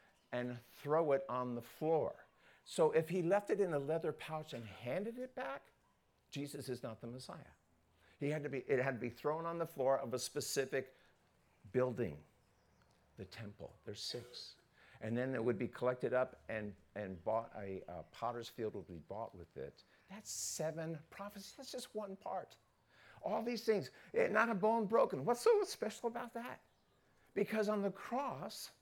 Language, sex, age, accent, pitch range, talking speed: English, male, 50-69, American, 120-200 Hz, 170 wpm